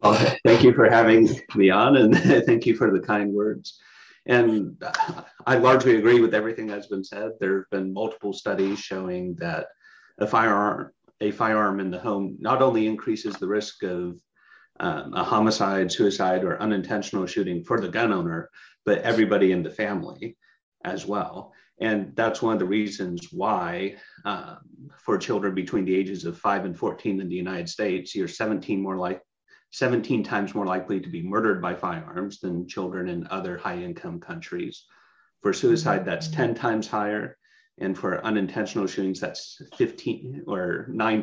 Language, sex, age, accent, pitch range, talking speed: English, male, 30-49, American, 95-115 Hz, 165 wpm